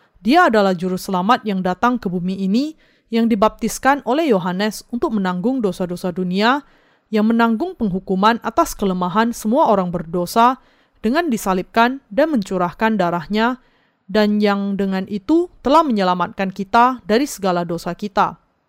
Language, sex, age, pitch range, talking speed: Indonesian, female, 30-49, 190-245 Hz, 130 wpm